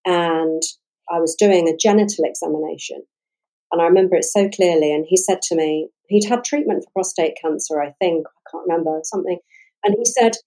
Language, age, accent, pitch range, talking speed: English, 50-69, British, 165-210 Hz, 190 wpm